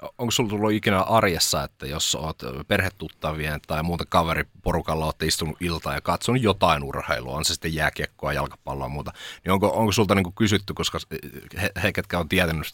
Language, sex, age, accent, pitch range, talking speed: Finnish, male, 30-49, native, 80-100 Hz, 180 wpm